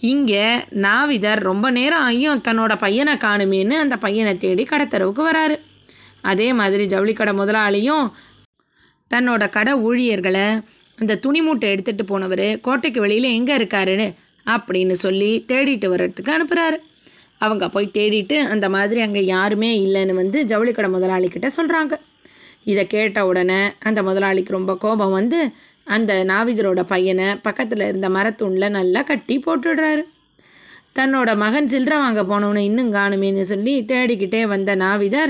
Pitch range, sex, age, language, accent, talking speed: 195-265 Hz, female, 20-39, Tamil, native, 125 wpm